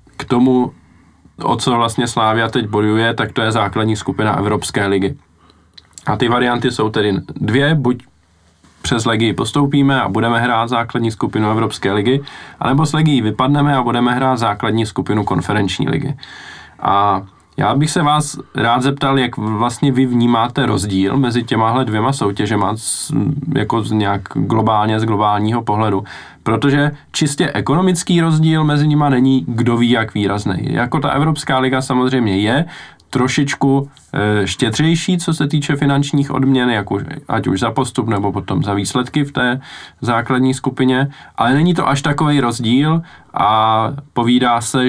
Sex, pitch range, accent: male, 110-135 Hz, native